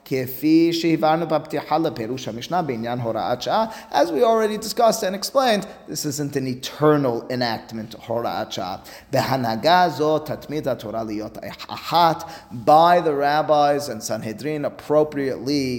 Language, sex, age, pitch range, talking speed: English, male, 30-49, 125-165 Hz, 65 wpm